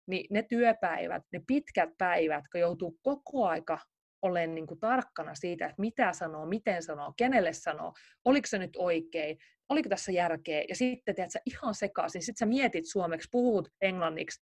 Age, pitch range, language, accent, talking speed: 30-49, 170-215 Hz, Finnish, native, 165 wpm